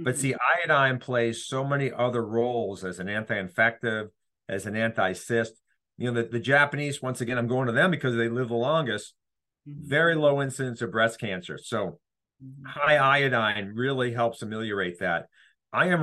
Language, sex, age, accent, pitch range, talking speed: English, male, 50-69, American, 100-130 Hz, 170 wpm